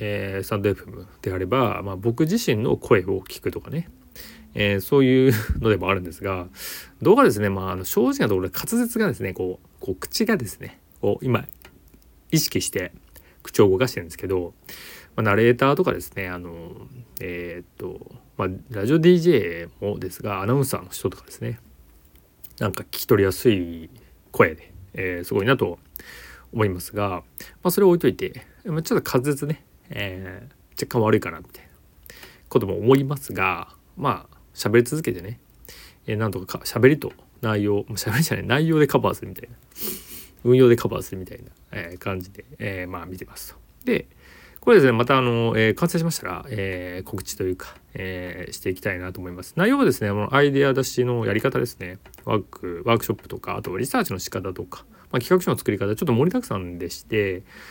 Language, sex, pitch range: Japanese, male, 90-130 Hz